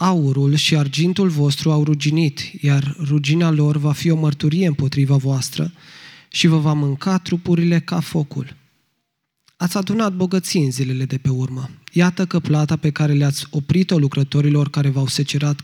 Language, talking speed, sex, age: Romanian, 155 wpm, male, 20-39